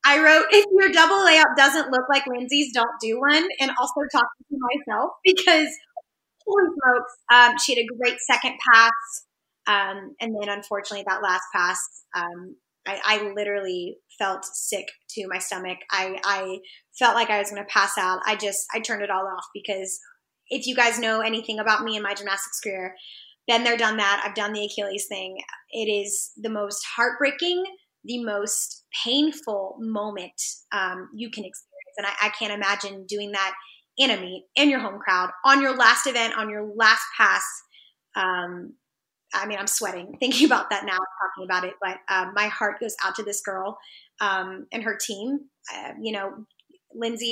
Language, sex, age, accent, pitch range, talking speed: English, female, 10-29, American, 200-250 Hz, 185 wpm